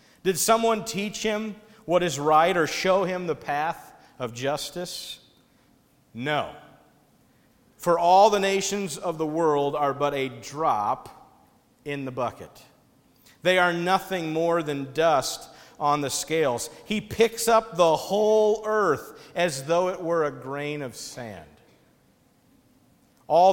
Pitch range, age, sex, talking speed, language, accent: 150-195 Hz, 50-69, male, 135 wpm, English, American